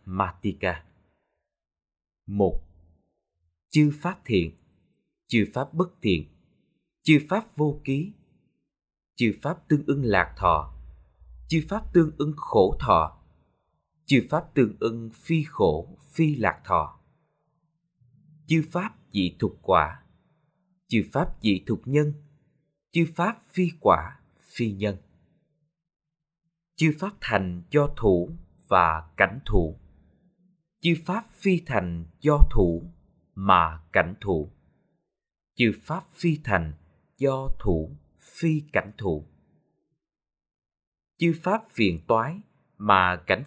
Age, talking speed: 20-39, 110 wpm